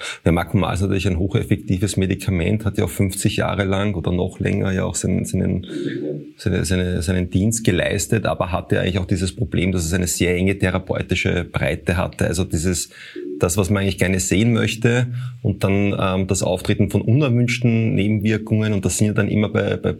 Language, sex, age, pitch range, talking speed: German, male, 30-49, 95-110 Hz, 190 wpm